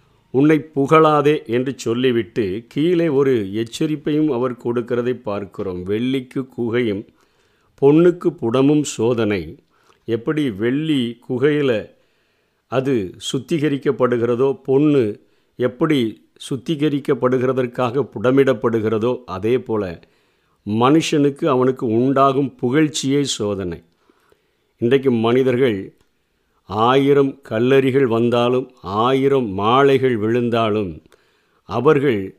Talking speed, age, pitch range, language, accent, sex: 70 wpm, 50-69, 120-140 Hz, Tamil, native, male